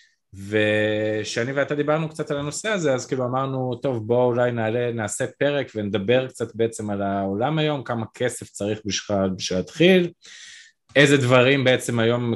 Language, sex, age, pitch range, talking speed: Hebrew, male, 20-39, 110-150 Hz, 155 wpm